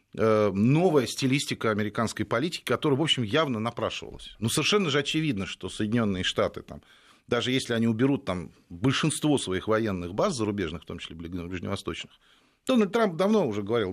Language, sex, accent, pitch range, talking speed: Russian, male, native, 105-150 Hz, 155 wpm